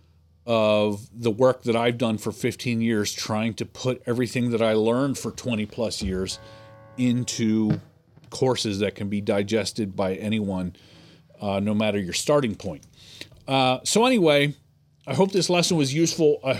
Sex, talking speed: male, 160 wpm